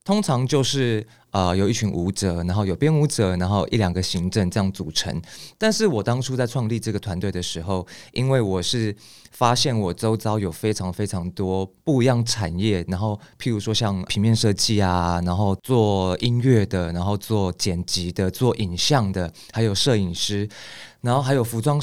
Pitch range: 95-125 Hz